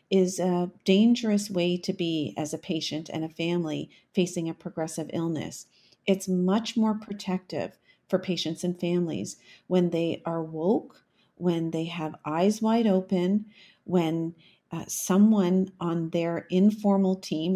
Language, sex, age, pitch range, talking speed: English, female, 40-59, 175-205 Hz, 140 wpm